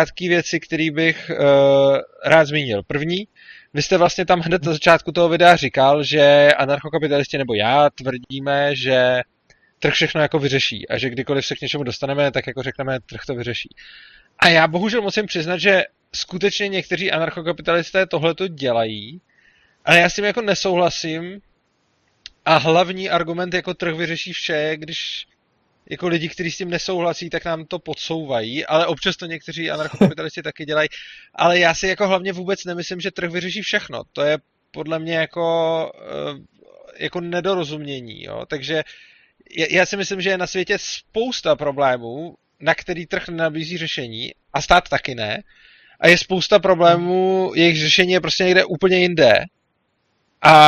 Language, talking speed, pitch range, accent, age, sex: Czech, 155 wpm, 150-185 Hz, native, 20-39, male